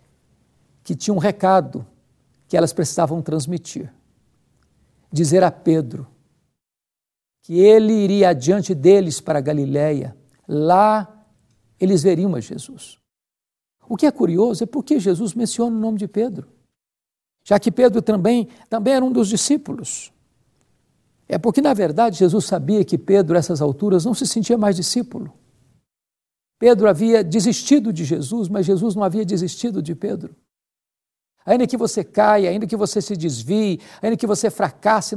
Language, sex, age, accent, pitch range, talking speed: Portuguese, male, 60-79, Brazilian, 175-220 Hz, 145 wpm